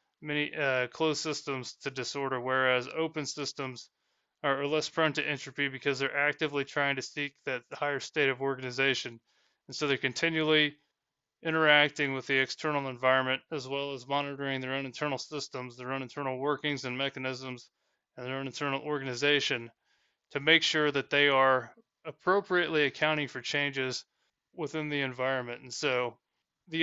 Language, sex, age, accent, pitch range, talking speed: English, male, 20-39, American, 135-150 Hz, 155 wpm